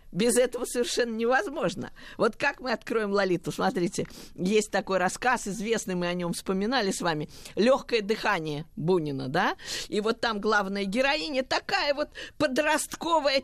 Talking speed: 145 wpm